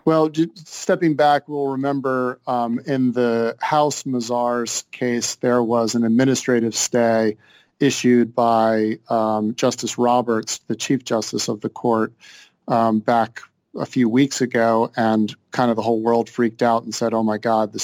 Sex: male